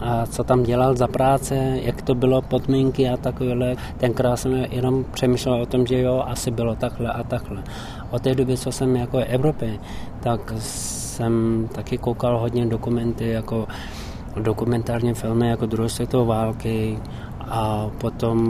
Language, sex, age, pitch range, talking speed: Czech, male, 20-39, 110-120 Hz, 155 wpm